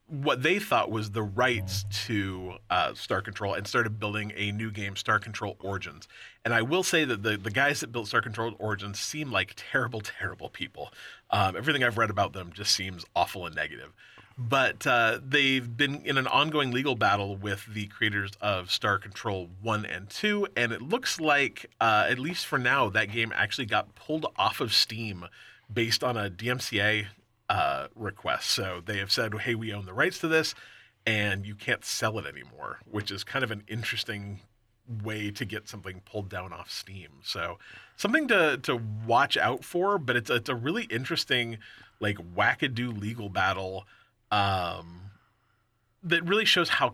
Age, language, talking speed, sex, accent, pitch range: 30-49, English, 180 wpm, male, American, 100-120 Hz